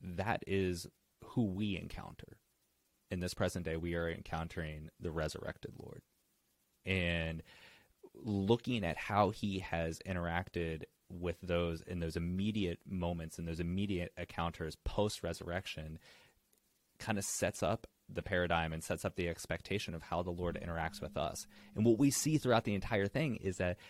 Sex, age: male, 30-49